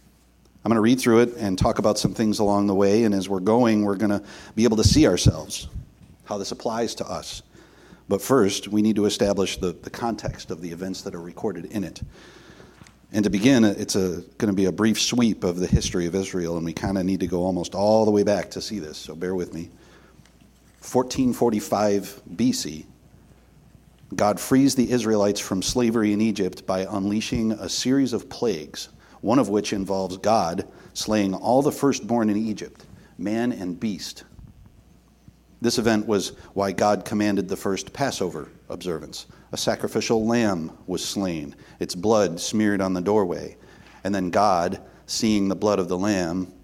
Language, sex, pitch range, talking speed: English, male, 95-110 Hz, 185 wpm